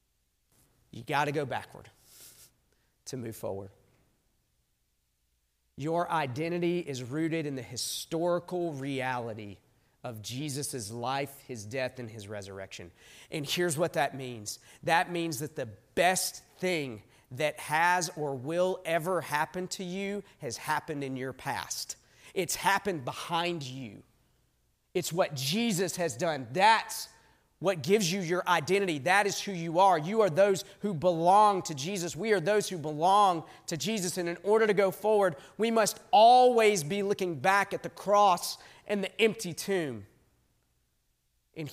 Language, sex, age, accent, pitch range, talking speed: English, male, 40-59, American, 130-185 Hz, 145 wpm